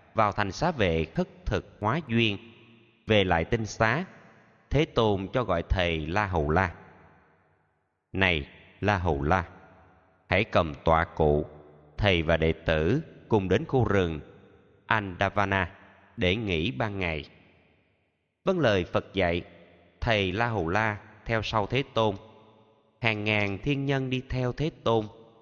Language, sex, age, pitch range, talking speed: Vietnamese, male, 20-39, 90-115 Hz, 145 wpm